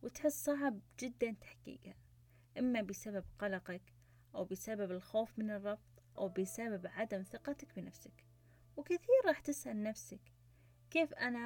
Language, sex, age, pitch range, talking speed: English, female, 20-39, 180-255 Hz, 120 wpm